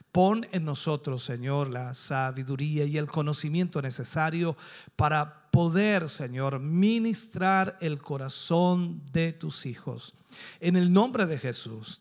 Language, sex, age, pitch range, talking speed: Spanish, male, 50-69, 130-180 Hz, 120 wpm